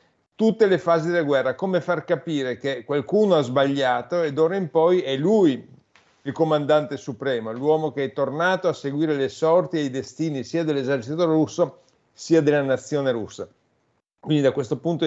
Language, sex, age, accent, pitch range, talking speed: Italian, male, 40-59, native, 135-170 Hz, 170 wpm